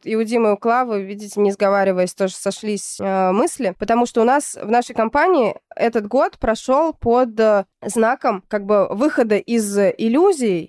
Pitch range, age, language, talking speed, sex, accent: 200-240 Hz, 20-39, Russian, 165 wpm, female, native